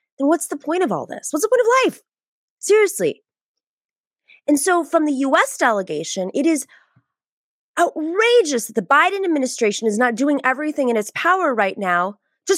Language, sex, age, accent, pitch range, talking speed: English, female, 20-39, American, 270-405 Hz, 170 wpm